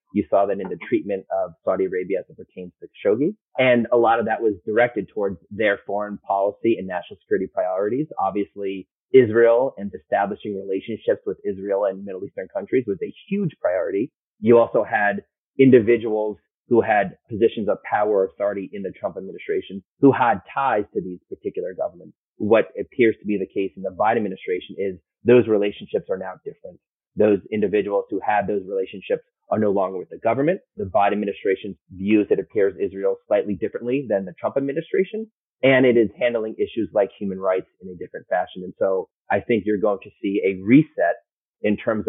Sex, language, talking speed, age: male, English, 185 wpm, 30-49